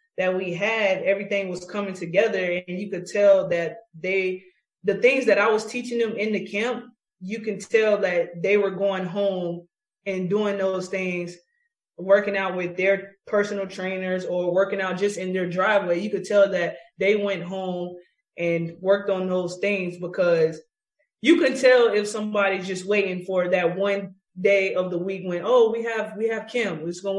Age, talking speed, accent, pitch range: 20-39, 190 wpm, American, 185-220 Hz